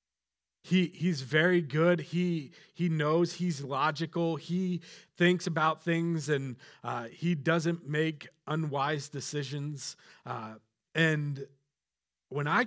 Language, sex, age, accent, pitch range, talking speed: English, male, 40-59, American, 140-185 Hz, 115 wpm